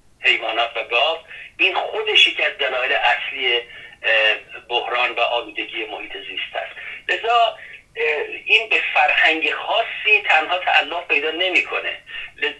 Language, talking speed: Persian, 105 wpm